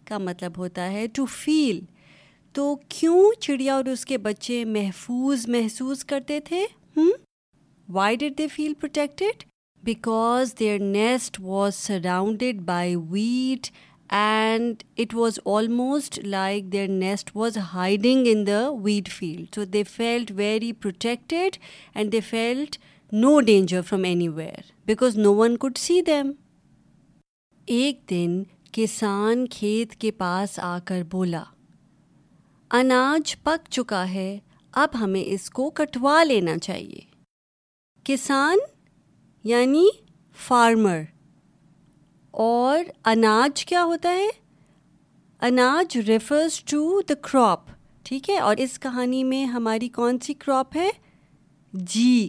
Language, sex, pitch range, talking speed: Urdu, female, 195-270 Hz, 120 wpm